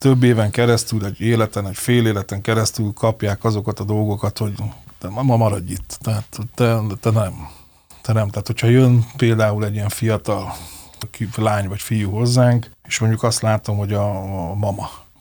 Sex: male